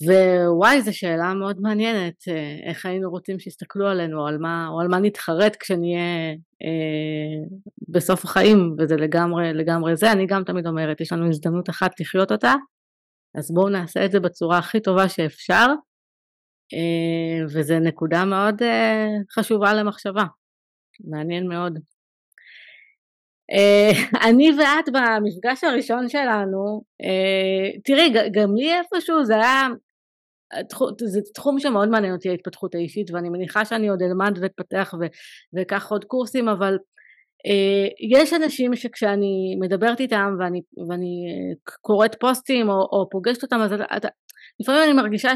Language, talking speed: Hebrew, 135 wpm